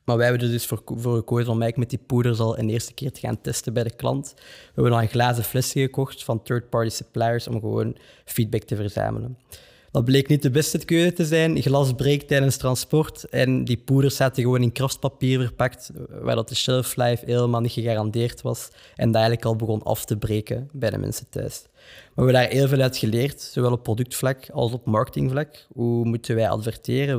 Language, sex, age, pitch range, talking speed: Dutch, male, 20-39, 115-135 Hz, 210 wpm